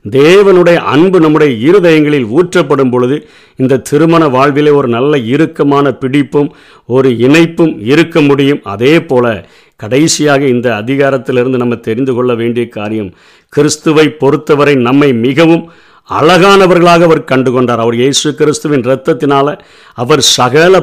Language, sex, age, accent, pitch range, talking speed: Tamil, male, 50-69, native, 135-170 Hz, 110 wpm